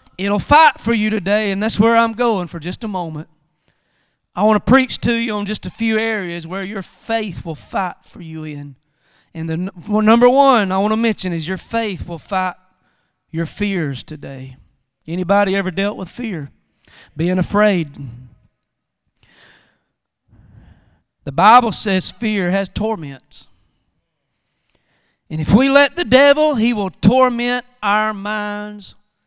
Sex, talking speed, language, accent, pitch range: male, 150 wpm, English, American, 195-290 Hz